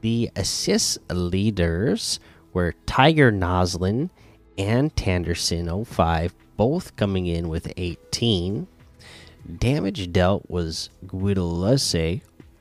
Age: 30-49